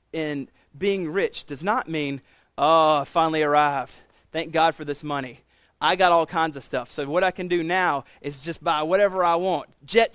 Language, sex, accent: English, male, American